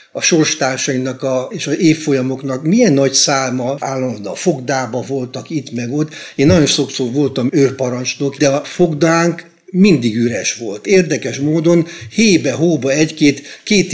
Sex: male